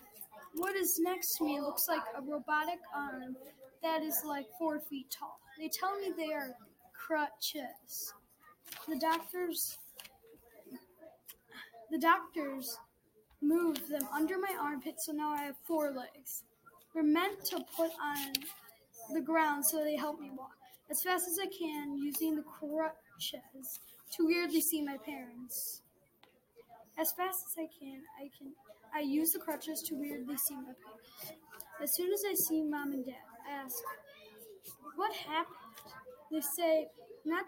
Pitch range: 280-330 Hz